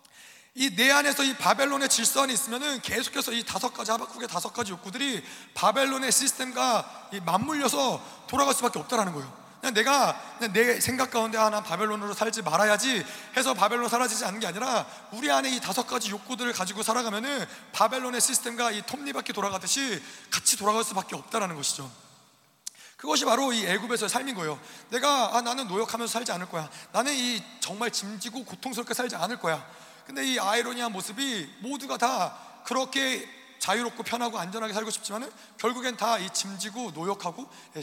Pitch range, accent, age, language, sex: 205-250 Hz, native, 30-49, Korean, male